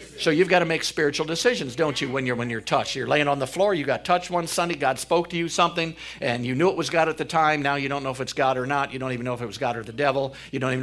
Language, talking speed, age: English, 340 wpm, 50-69